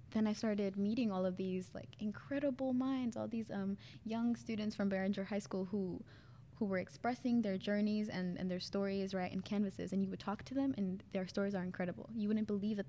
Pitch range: 175-200 Hz